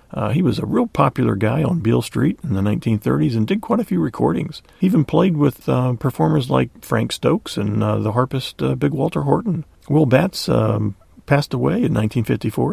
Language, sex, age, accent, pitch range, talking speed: English, male, 40-59, American, 105-155 Hz, 205 wpm